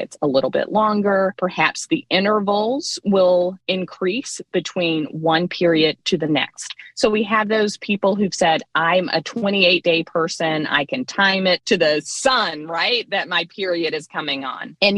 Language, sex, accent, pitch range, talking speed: English, female, American, 150-200 Hz, 170 wpm